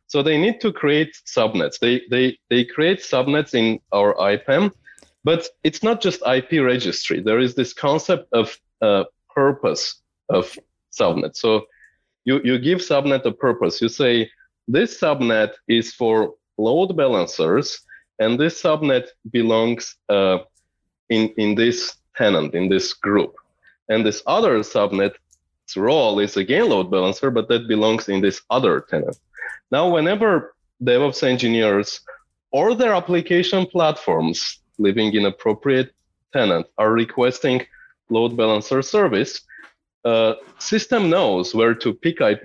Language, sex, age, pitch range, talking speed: English, male, 20-39, 105-145 Hz, 135 wpm